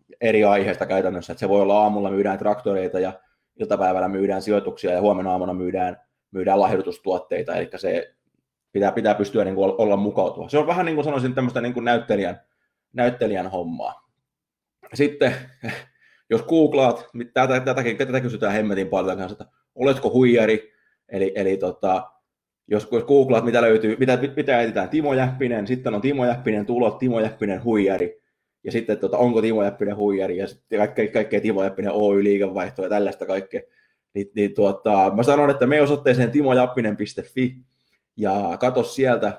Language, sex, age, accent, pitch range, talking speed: Finnish, male, 20-39, native, 100-125 Hz, 155 wpm